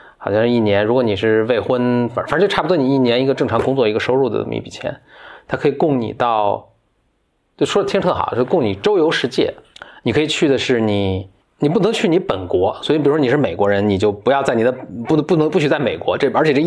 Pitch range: 105-135 Hz